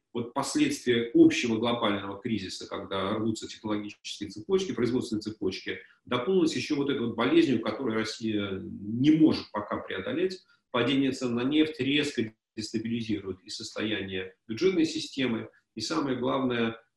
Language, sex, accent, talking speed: Russian, male, native, 125 wpm